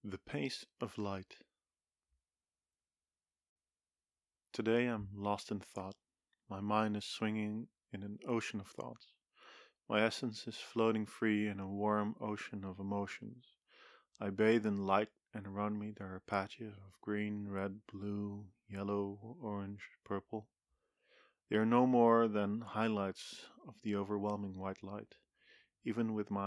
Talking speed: 135 wpm